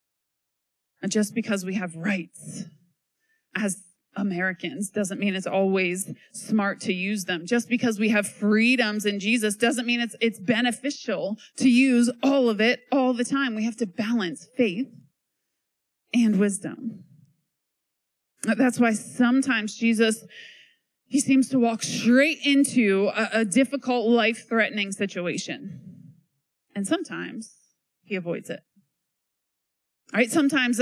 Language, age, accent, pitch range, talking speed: English, 20-39, American, 190-245 Hz, 125 wpm